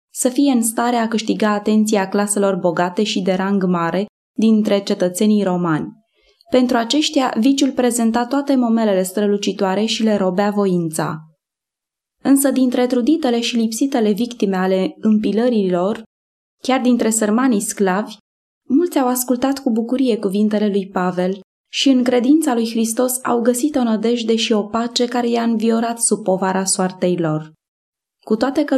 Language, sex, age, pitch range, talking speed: Romanian, female, 20-39, 205-250 Hz, 140 wpm